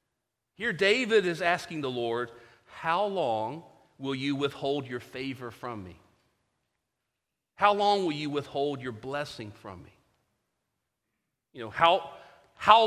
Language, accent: English, American